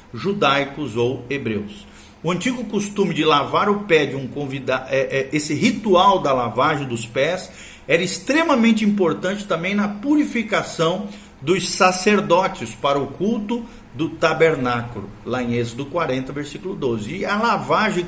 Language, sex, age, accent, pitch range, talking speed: Portuguese, male, 50-69, Brazilian, 135-200 Hz, 145 wpm